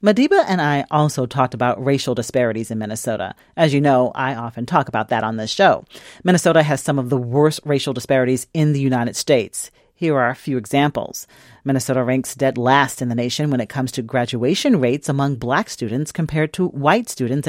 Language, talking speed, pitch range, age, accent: English, 200 wpm, 130-190 Hz, 40-59, American